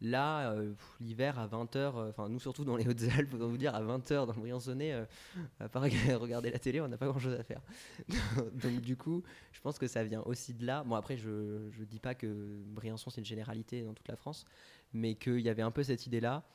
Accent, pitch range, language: French, 110-125 Hz, French